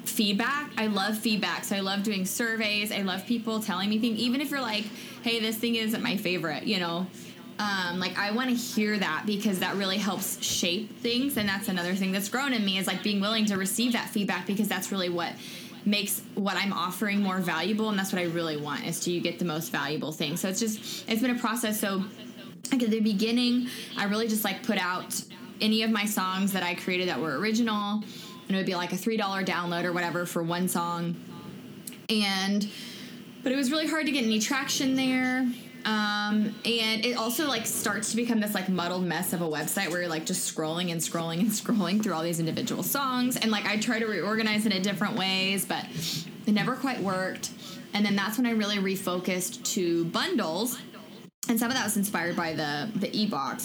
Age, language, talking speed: 20-39, English, 215 wpm